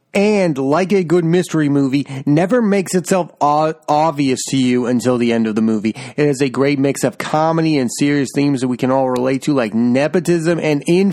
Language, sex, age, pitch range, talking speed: English, male, 30-49, 140-185 Hz, 210 wpm